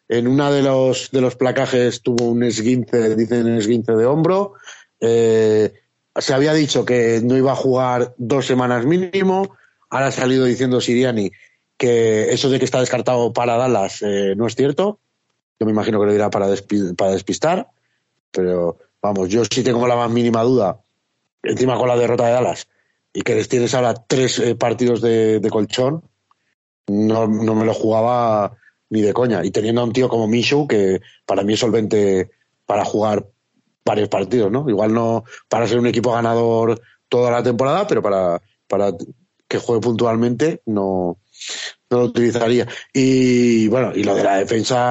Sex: male